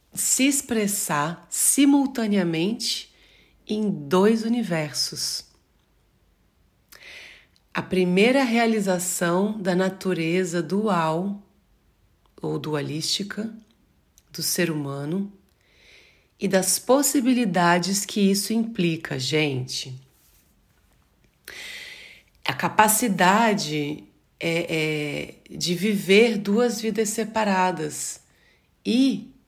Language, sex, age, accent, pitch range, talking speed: Portuguese, female, 40-59, Brazilian, 170-215 Hz, 70 wpm